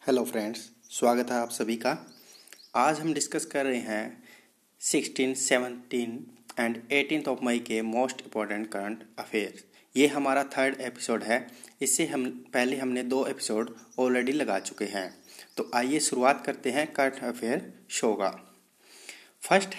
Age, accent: 30-49, native